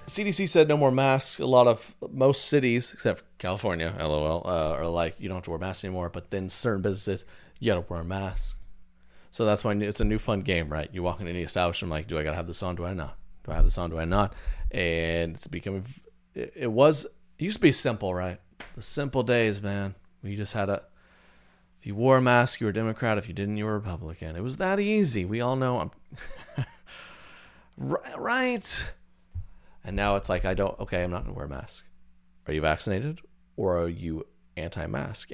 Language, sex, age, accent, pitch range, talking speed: English, male, 30-49, American, 80-110 Hz, 220 wpm